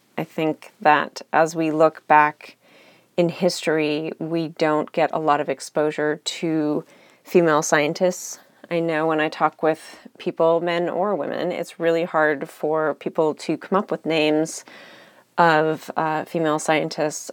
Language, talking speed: English, 150 wpm